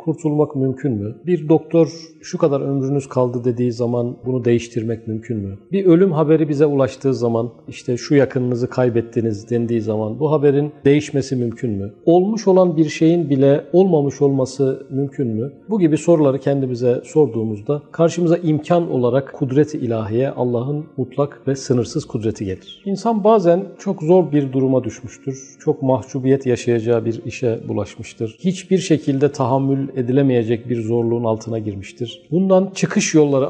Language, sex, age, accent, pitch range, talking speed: Turkish, male, 50-69, native, 120-155 Hz, 145 wpm